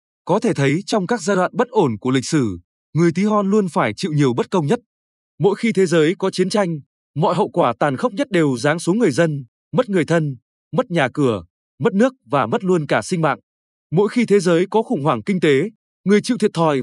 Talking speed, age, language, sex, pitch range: 240 wpm, 20-39, Vietnamese, male, 150-205 Hz